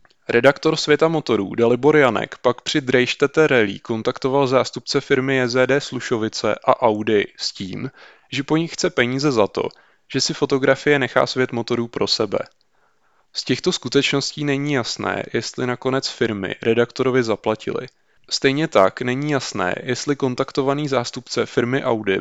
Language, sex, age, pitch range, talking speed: Czech, male, 20-39, 115-135 Hz, 140 wpm